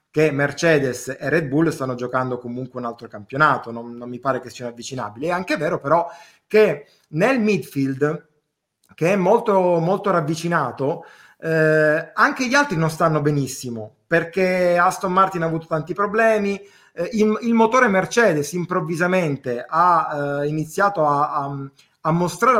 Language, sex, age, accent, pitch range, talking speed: Italian, male, 30-49, native, 145-180 Hz, 150 wpm